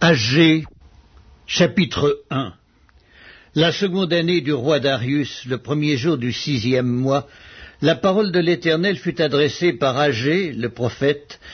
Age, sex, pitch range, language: 60-79, male, 130-170 Hz, French